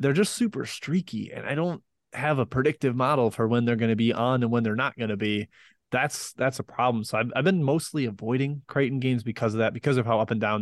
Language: English